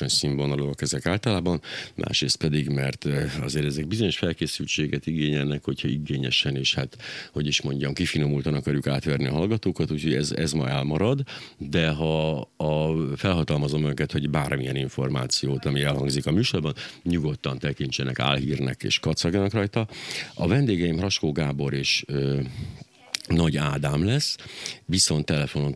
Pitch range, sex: 70-85 Hz, male